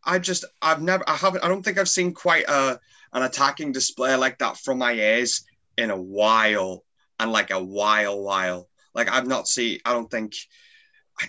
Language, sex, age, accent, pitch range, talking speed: English, male, 20-39, British, 125-175 Hz, 195 wpm